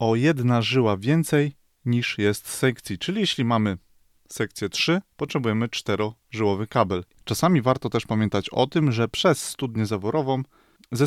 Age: 20-39